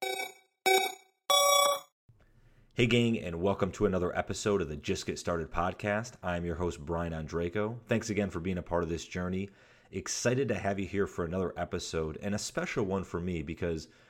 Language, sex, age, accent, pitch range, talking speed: English, male, 30-49, American, 85-105 Hz, 180 wpm